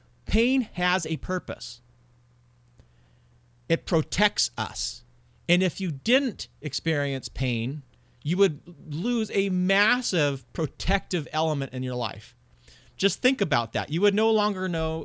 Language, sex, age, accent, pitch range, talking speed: English, male, 40-59, American, 130-185 Hz, 130 wpm